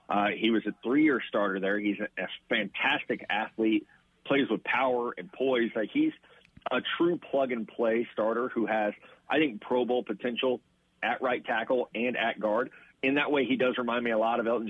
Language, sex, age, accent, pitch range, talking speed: English, male, 40-59, American, 110-135 Hz, 190 wpm